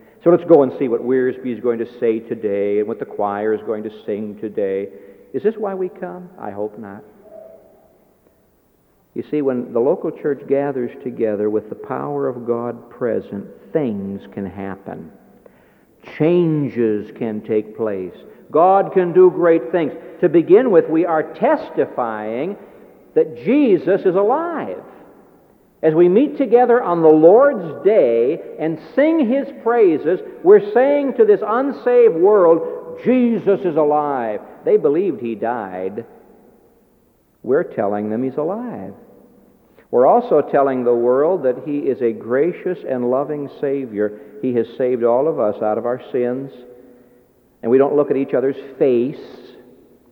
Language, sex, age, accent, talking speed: English, male, 60-79, American, 150 wpm